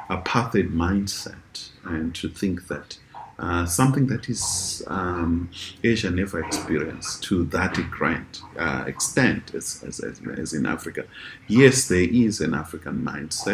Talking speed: 135 wpm